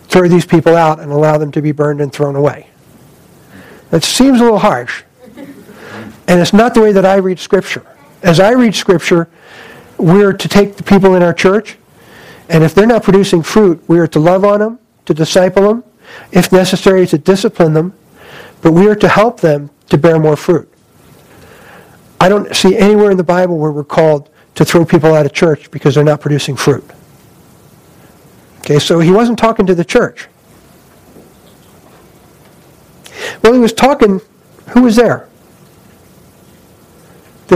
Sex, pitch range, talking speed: male, 160-200 Hz, 170 wpm